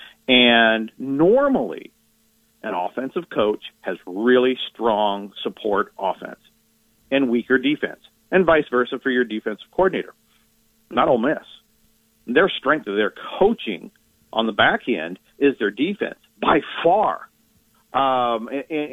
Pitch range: 110-140 Hz